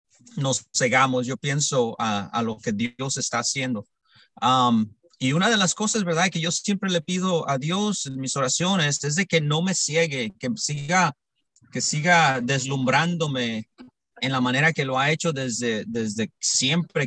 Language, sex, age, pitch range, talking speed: English, male, 30-49, 125-165 Hz, 170 wpm